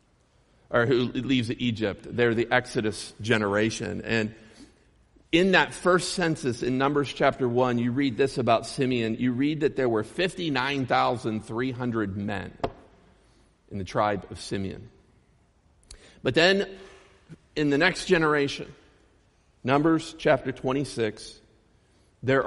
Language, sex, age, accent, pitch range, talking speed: English, male, 50-69, American, 105-135 Hz, 120 wpm